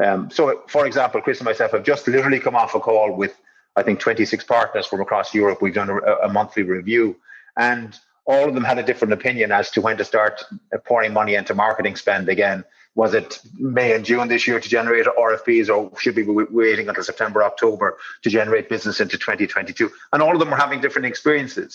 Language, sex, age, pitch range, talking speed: English, male, 30-49, 110-140 Hz, 215 wpm